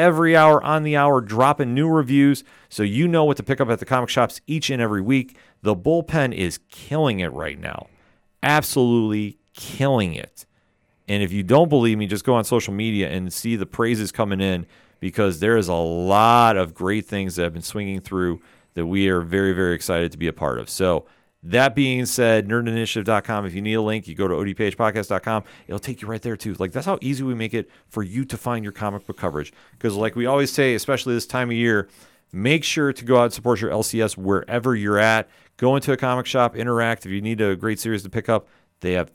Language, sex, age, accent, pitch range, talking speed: English, male, 40-59, American, 95-120 Hz, 225 wpm